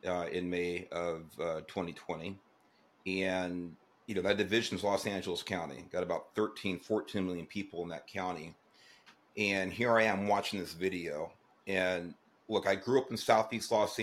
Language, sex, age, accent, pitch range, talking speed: English, male, 40-59, American, 90-105 Hz, 165 wpm